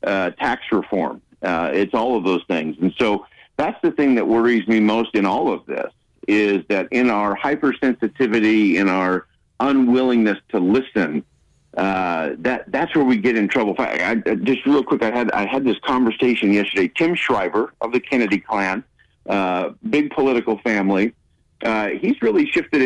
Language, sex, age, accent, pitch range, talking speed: English, male, 50-69, American, 95-130 Hz, 175 wpm